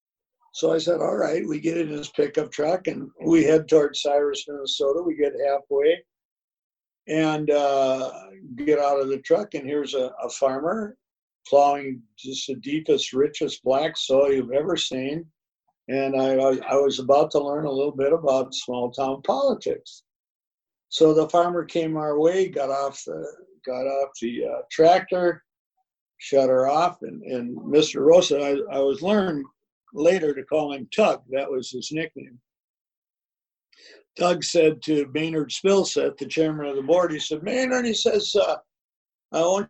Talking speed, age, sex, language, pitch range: 165 wpm, 60-79, male, English, 140-195 Hz